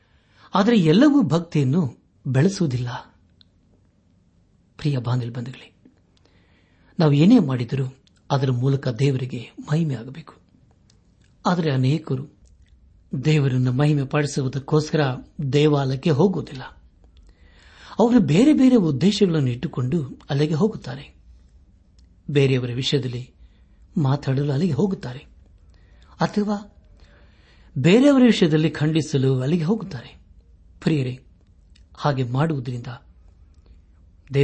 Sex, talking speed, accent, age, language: male, 65 wpm, native, 60-79, Kannada